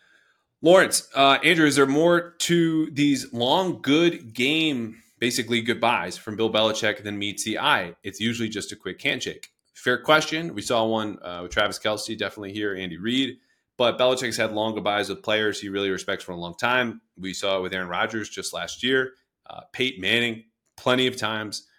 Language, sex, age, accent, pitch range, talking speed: English, male, 30-49, American, 105-135 Hz, 185 wpm